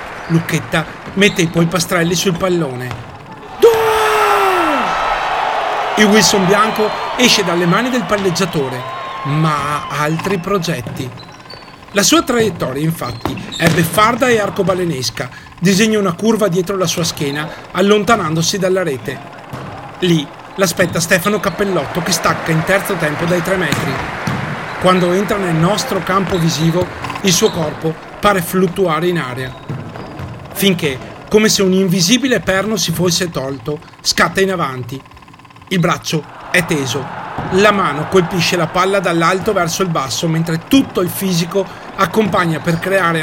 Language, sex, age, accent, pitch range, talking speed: Italian, male, 40-59, native, 160-200 Hz, 130 wpm